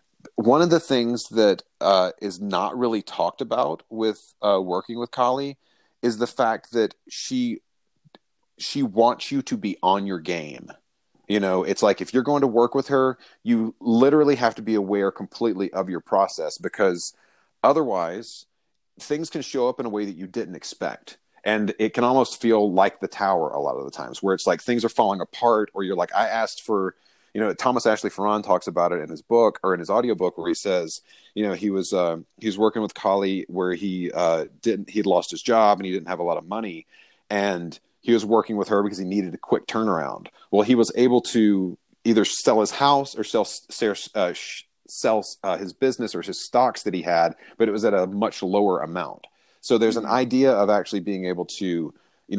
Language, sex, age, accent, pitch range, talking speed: English, male, 30-49, American, 95-125 Hz, 215 wpm